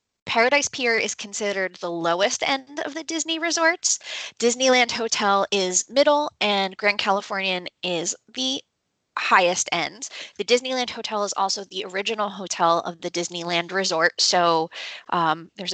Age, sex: 20-39, female